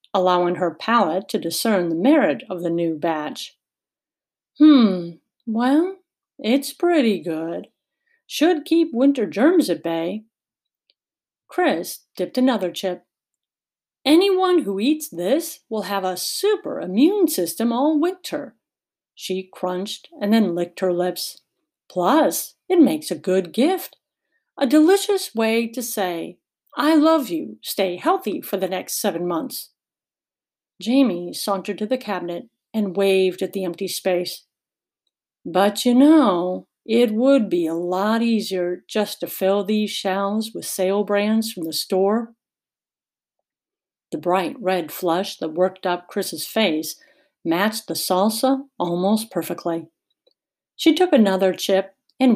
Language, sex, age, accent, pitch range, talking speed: English, female, 50-69, American, 180-275 Hz, 135 wpm